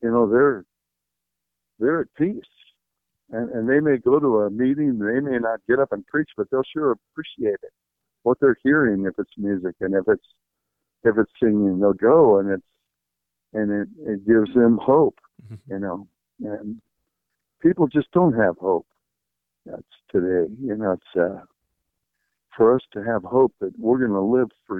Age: 60-79